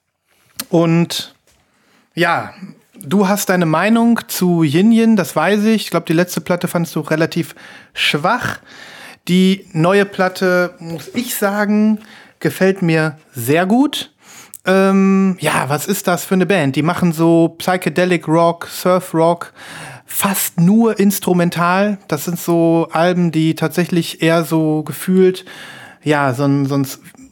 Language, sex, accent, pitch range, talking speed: German, male, German, 155-190 Hz, 135 wpm